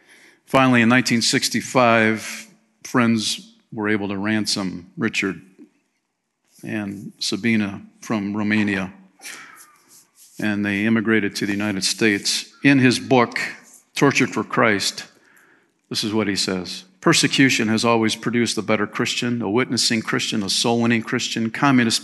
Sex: male